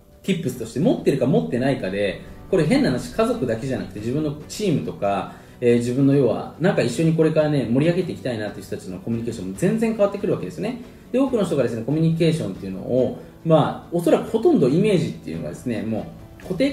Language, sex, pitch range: Japanese, male, 115-180 Hz